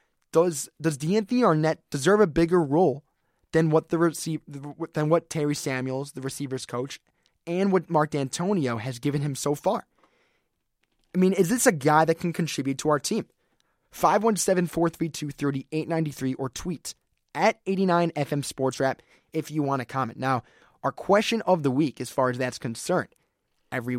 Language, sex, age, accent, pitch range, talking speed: English, male, 20-39, American, 135-175 Hz, 160 wpm